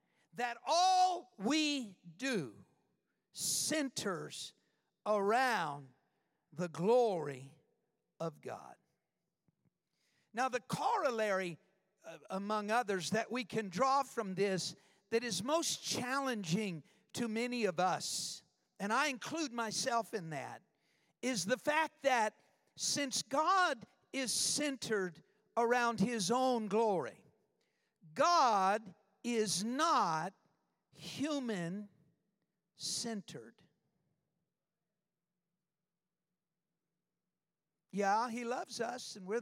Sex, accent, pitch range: male, American, 175-245 Hz